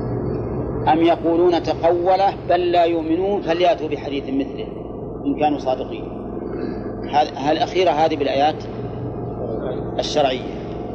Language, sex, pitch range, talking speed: Arabic, male, 125-175 Hz, 90 wpm